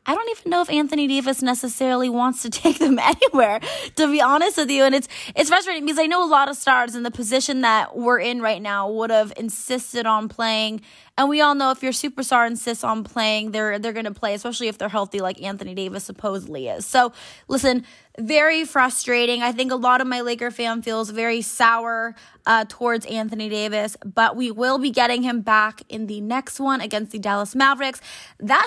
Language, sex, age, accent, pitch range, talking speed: English, female, 20-39, American, 230-280 Hz, 210 wpm